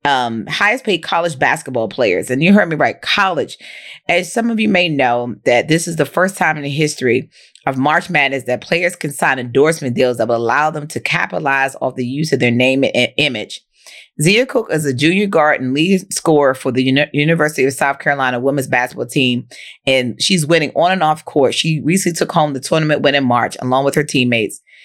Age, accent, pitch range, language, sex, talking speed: 30-49, American, 130-160 Hz, English, female, 210 wpm